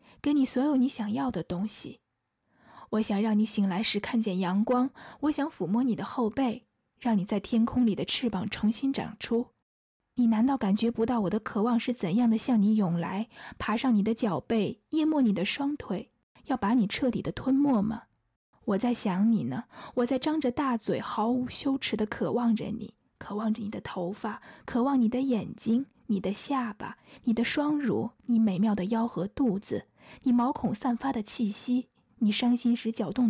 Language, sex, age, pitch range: Chinese, female, 20-39, 210-250 Hz